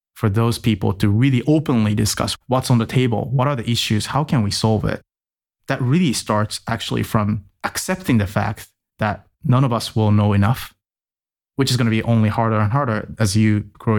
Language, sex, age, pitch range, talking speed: English, male, 20-39, 105-120 Hz, 195 wpm